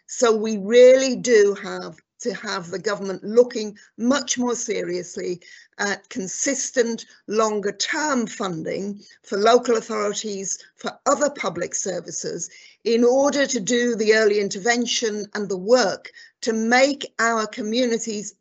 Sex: female